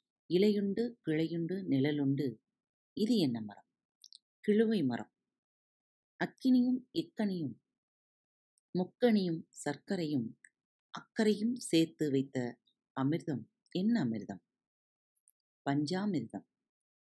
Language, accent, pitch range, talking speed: Tamil, native, 140-210 Hz, 65 wpm